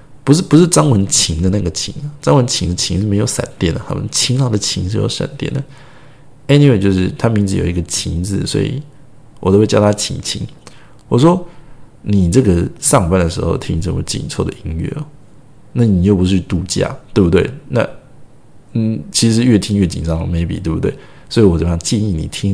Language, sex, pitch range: Chinese, male, 90-135 Hz